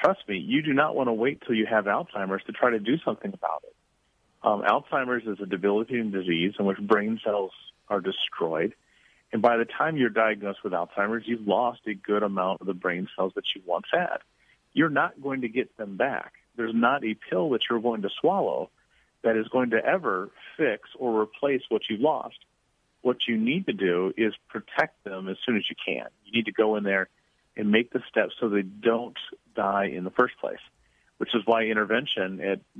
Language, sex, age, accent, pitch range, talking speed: English, male, 40-59, American, 100-120 Hz, 210 wpm